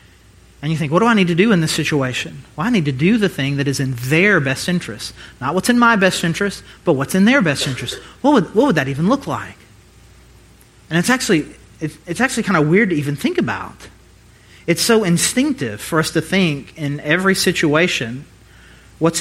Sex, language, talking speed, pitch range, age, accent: male, English, 210 wpm, 140-195 Hz, 30-49, American